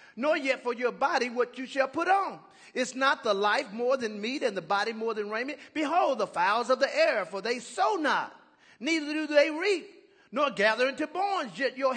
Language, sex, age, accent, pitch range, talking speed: English, male, 40-59, American, 225-295 Hz, 215 wpm